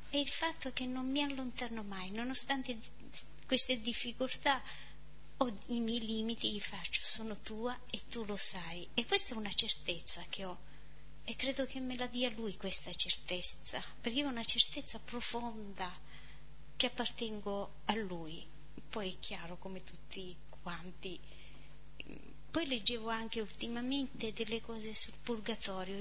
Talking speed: 145 wpm